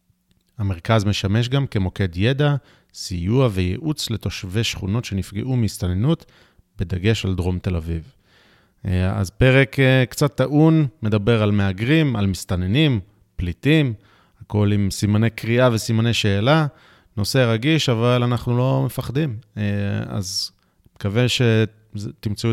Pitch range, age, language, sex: 95-125 Hz, 30-49, Hebrew, male